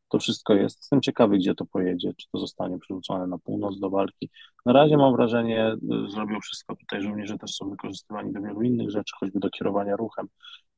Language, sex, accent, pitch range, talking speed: Polish, male, native, 105-125 Hz, 205 wpm